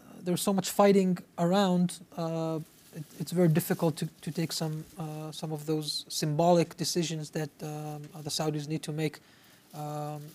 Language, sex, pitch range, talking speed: English, male, 155-185 Hz, 160 wpm